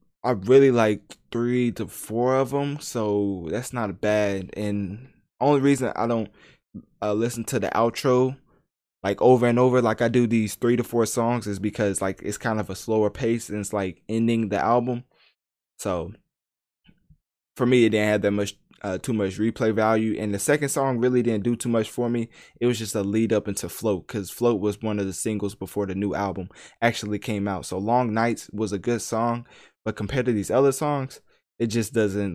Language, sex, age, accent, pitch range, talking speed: English, male, 20-39, American, 100-120 Hz, 205 wpm